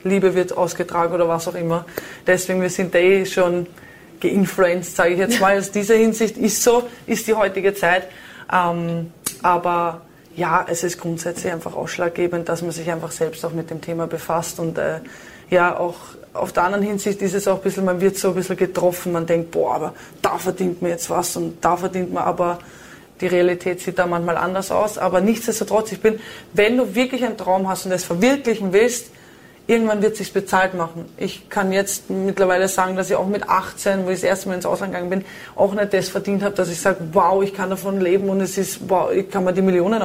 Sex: female